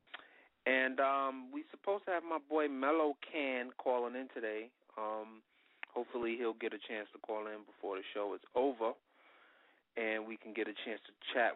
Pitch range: 110-140 Hz